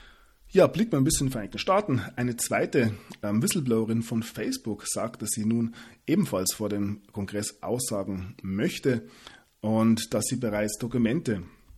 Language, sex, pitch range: German, male, 100-120 Hz